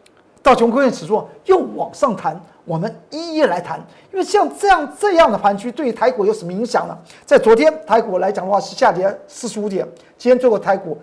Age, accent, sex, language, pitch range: 50-69, native, male, Chinese, 205-275 Hz